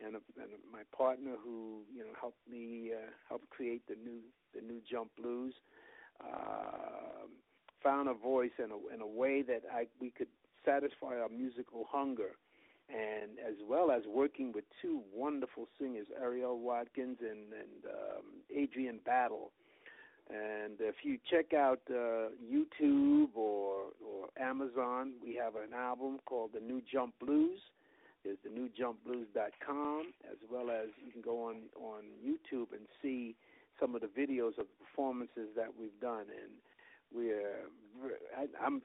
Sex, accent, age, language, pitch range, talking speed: male, American, 50-69, English, 115-150 Hz, 155 wpm